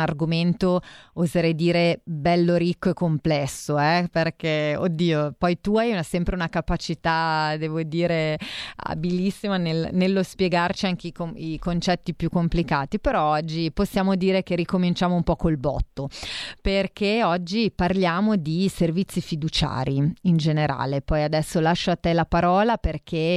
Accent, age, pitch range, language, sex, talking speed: native, 30-49, 155-180 Hz, Italian, female, 135 wpm